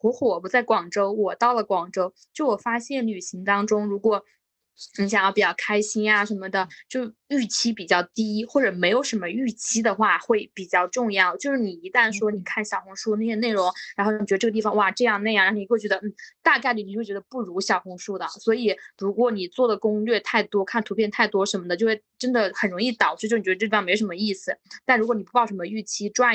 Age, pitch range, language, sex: 20-39, 200-240 Hz, Chinese, female